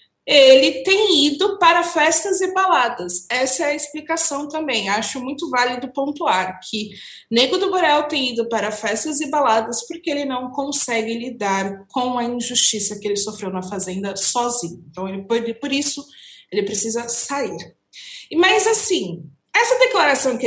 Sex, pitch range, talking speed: female, 210-295 Hz, 150 wpm